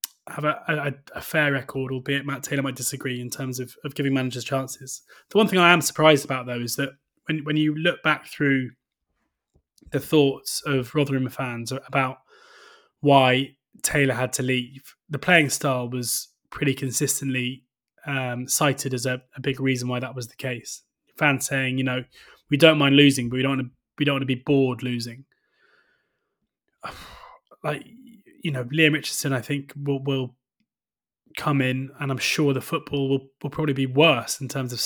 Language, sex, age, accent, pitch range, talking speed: English, male, 20-39, British, 130-145 Hz, 175 wpm